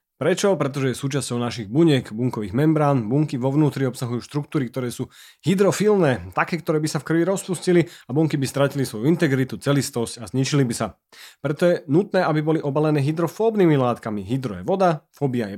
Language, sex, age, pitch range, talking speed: Slovak, male, 30-49, 130-170 Hz, 180 wpm